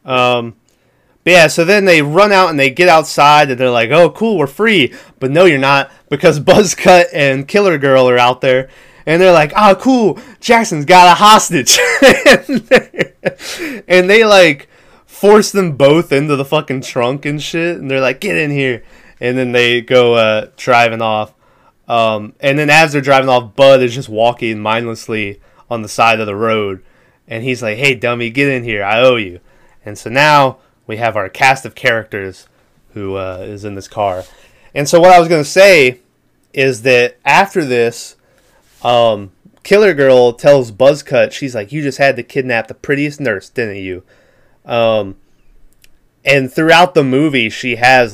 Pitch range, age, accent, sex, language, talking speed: 115-155 Hz, 20-39, American, male, English, 180 wpm